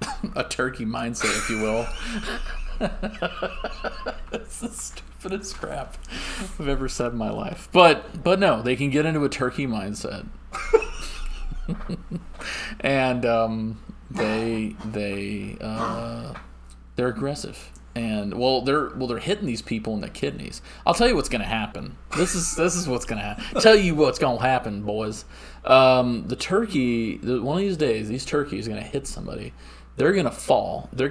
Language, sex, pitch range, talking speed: English, male, 110-155 Hz, 160 wpm